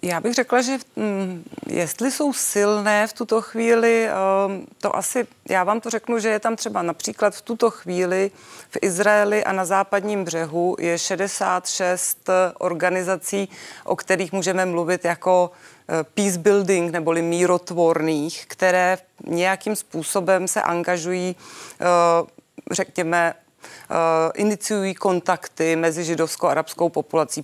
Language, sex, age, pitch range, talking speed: Czech, female, 30-49, 170-195 Hz, 120 wpm